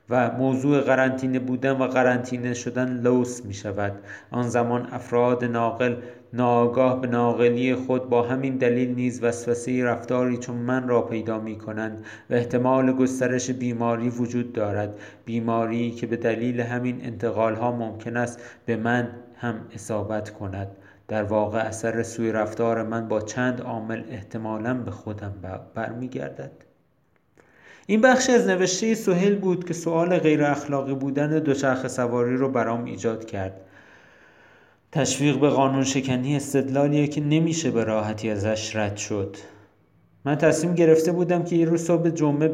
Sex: male